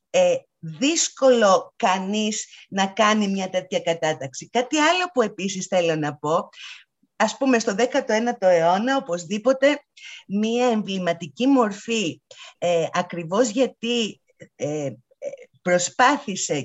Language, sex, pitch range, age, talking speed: Greek, female, 180-250 Hz, 50-69, 95 wpm